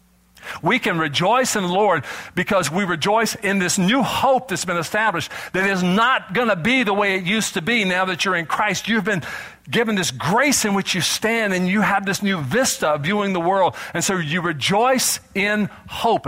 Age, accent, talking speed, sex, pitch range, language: 50-69, American, 205 wpm, male, 145-205 Hz, English